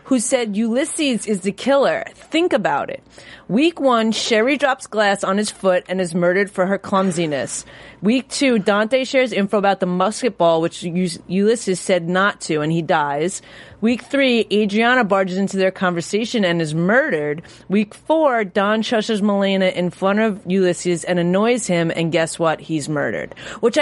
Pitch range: 180-235 Hz